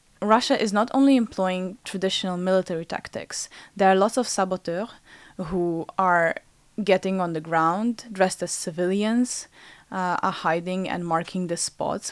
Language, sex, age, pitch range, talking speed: French, female, 10-29, 170-195 Hz, 145 wpm